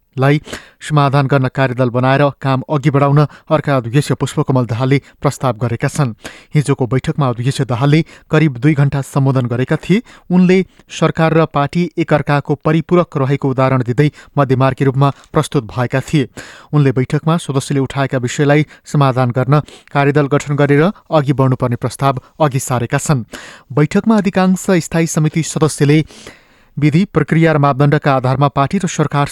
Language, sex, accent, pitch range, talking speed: English, male, Indian, 135-155 Hz, 115 wpm